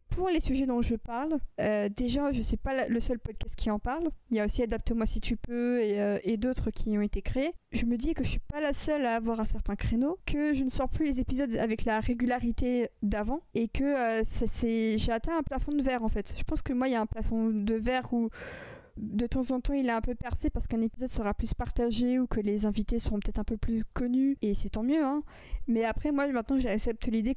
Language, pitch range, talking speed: French, 225-270 Hz, 265 wpm